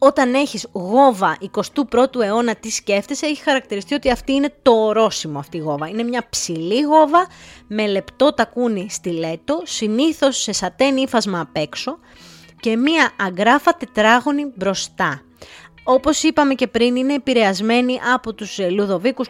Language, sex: Greek, female